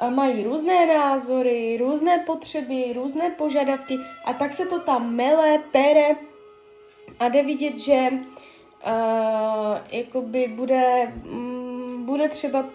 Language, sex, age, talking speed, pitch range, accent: Czech, female, 20-39, 120 wpm, 230-285 Hz, native